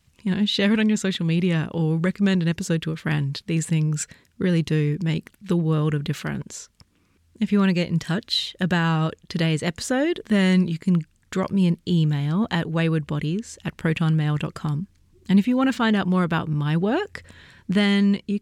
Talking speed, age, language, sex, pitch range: 190 wpm, 30-49, English, female, 155-190 Hz